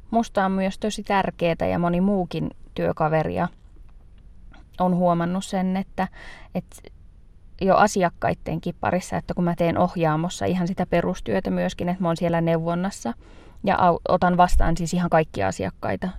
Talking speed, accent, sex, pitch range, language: 135 wpm, native, female, 110-185 Hz, Finnish